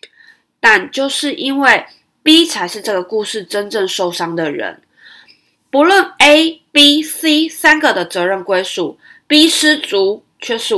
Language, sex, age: Chinese, female, 20-39